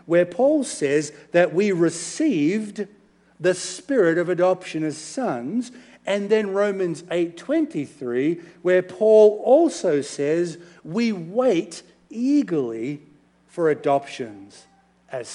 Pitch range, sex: 150-215 Hz, male